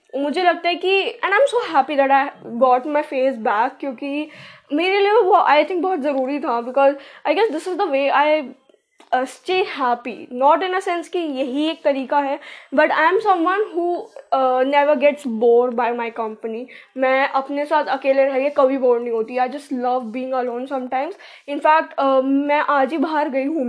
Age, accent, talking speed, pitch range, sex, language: 10-29, native, 195 wpm, 250-340 Hz, female, Hindi